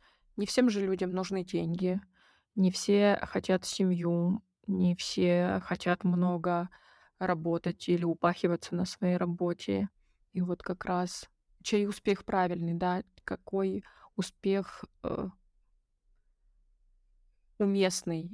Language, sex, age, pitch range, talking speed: Russian, female, 20-39, 175-190 Hz, 105 wpm